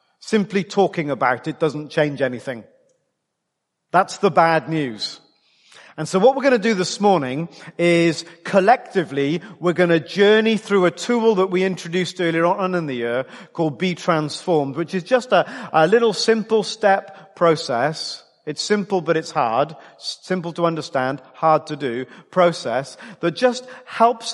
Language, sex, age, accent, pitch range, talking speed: English, male, 40-59, British, 145-185 Hz, 155 wpm